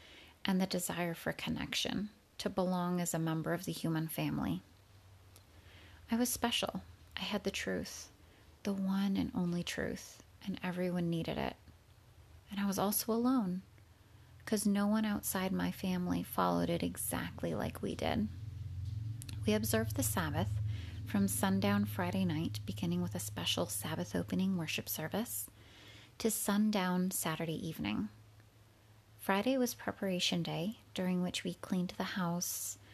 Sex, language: female, English